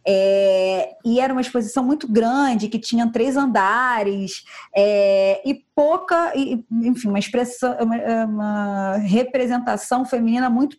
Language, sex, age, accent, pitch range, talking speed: Portuguese, female, 20-39, Brazilian, 195-260 Hz, 130 wpm